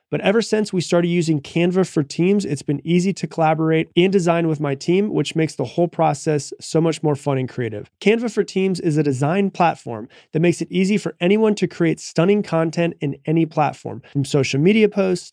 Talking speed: 210 wpm